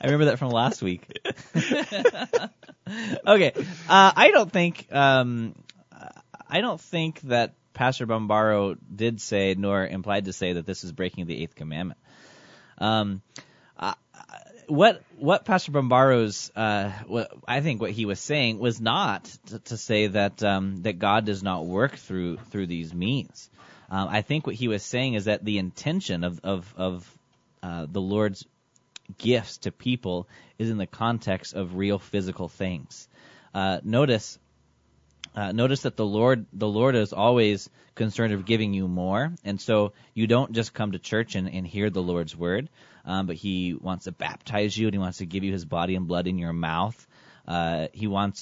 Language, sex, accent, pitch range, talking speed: English, male, American, 95-120 Hz, 175 wpm